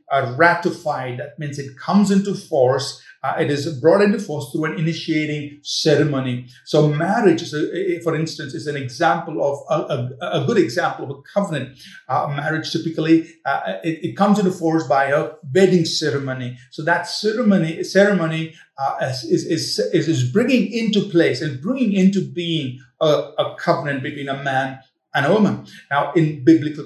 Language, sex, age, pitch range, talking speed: English, male, 50-69, 145-180 Hz, 170 wpm